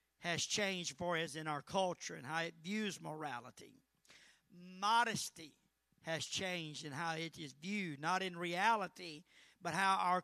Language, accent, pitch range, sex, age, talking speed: English, American, 160-225 Hz, male, 50-69, 150 wpm